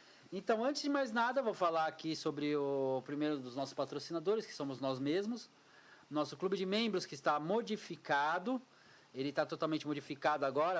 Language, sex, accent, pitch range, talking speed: Portuguese, male, Brazilian, 155-225 Hz, 170 wpm